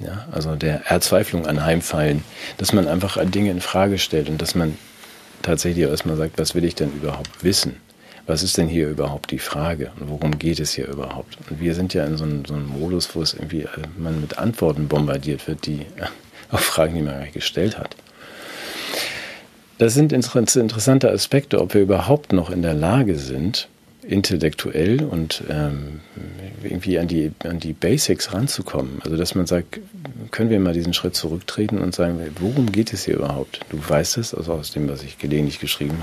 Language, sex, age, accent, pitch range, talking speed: German, male, 40-59, German, 75-95 Hz, 190 wpm